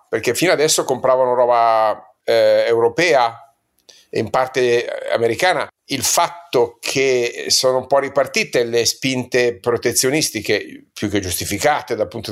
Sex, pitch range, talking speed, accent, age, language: male, 115-155 Hz, 125 wpm, native, 50-69, Italian